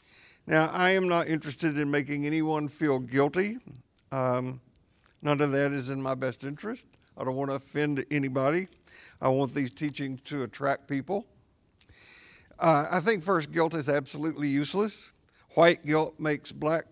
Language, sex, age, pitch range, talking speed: English, male, 50-69, 135-160 Hz, 155 wpm